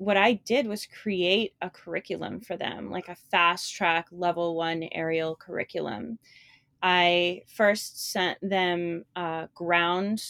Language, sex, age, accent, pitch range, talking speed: English, female, 20-39, American, 170-195 Hz, 135 wpm